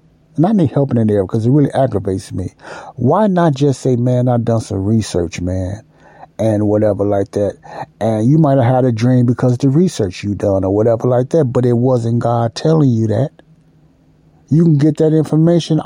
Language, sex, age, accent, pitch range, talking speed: English, male, 60-79, American, 110-150 Hz, 205 wpm